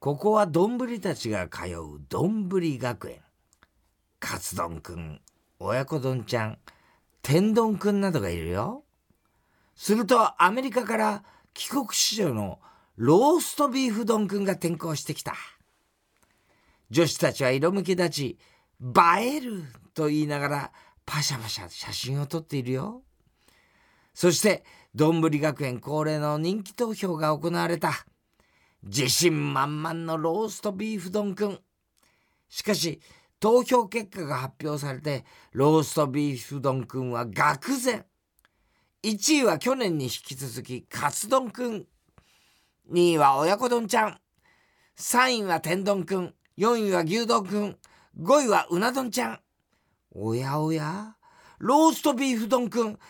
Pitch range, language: 140-215 Hz, Japanese